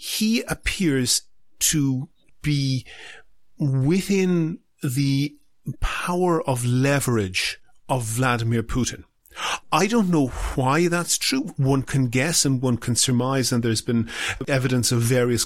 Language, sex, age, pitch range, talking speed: English, male, 40-59, 120-150 Hz, 120 wpm